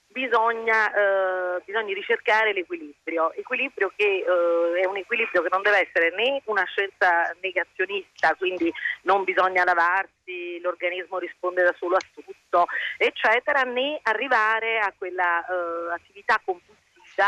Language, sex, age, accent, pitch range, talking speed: Italian, female, 40-59, native, 175-245 Hz, 130 wpm